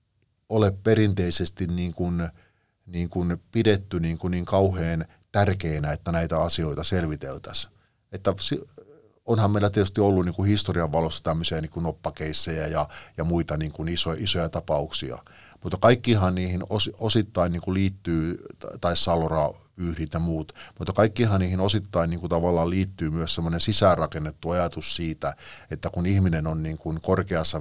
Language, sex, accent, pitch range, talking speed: Finnish, male, native, 80-95 Hz, 150 wpm